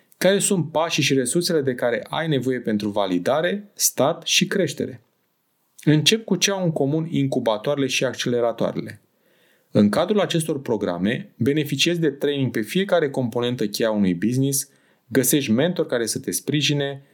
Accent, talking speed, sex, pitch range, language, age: native, 145 wpm, male, 120-165 Hz, Romanian, 30-49